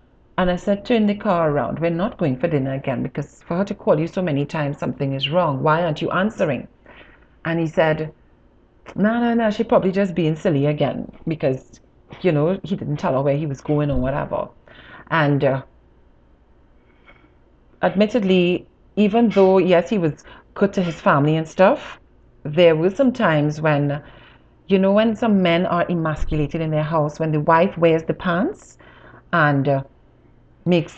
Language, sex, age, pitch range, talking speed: English, female, 30-49, 155-200 Hz, 180 wpm